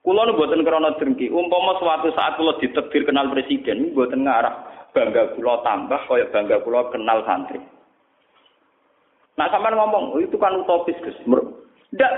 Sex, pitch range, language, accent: male, 205-320 Hz, Indonesian, native